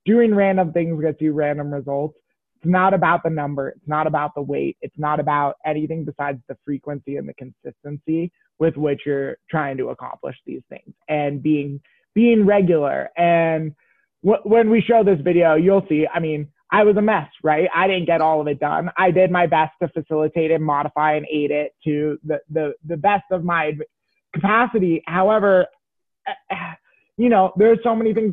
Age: 20-39